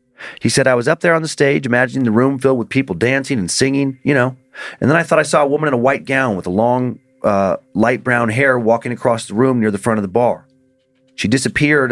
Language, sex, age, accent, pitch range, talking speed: English, male, 30-49, American, 115-135 Hz, 255 wpm